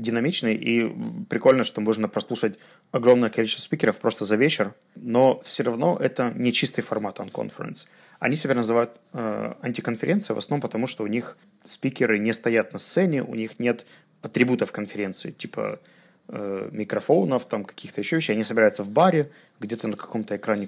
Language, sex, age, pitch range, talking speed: Russian, male, 20-39, 110-130 Hz, 165 wpm